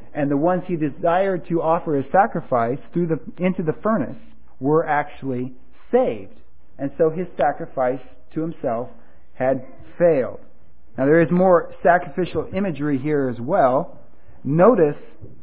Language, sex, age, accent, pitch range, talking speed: English, male, 40-59, American, 135-175 Hz, 135 wpm